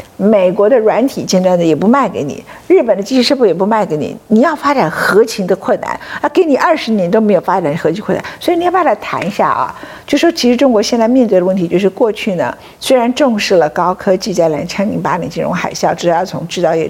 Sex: female